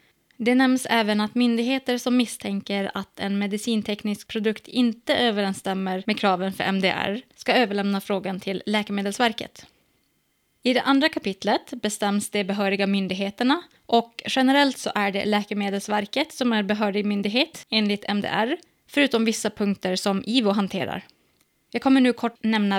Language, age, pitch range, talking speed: Swedish, 20-39, 200-245 Hz, 140 wpm